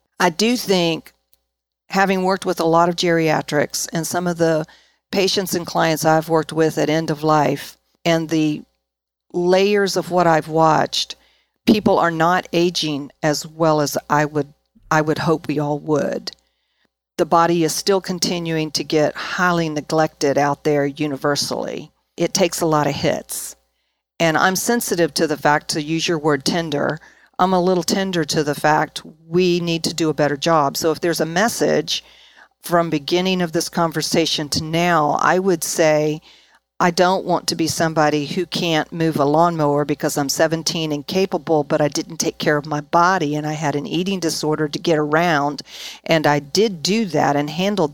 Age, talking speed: 50-69, 180 wpm